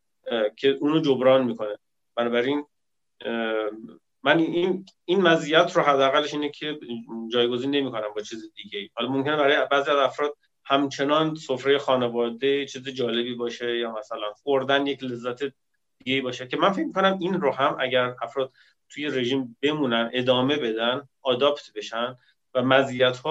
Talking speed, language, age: 145 wpm, Persian, 30-49